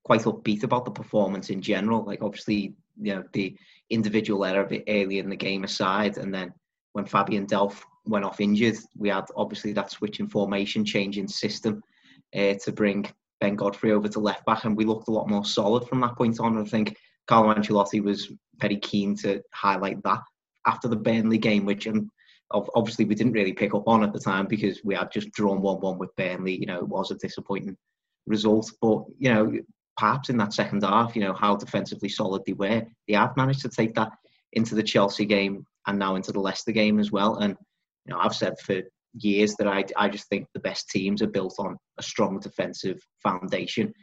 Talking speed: 210 wpm